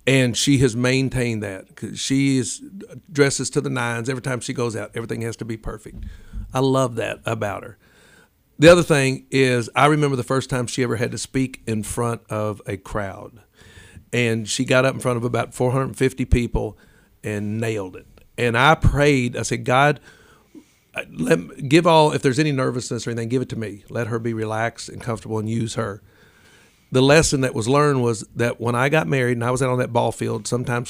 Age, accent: 50-69, American